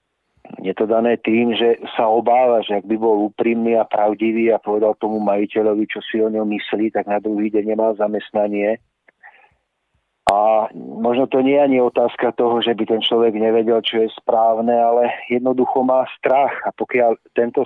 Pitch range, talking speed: 105-120 Hz, 175 wpm